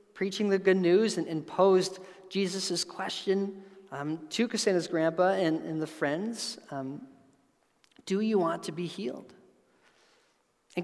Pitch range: 160-200 Hz